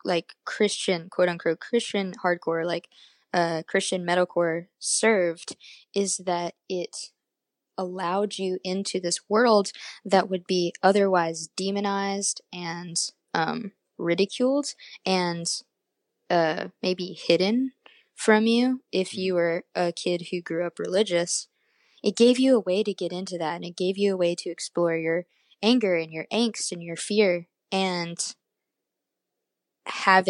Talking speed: 135 wpm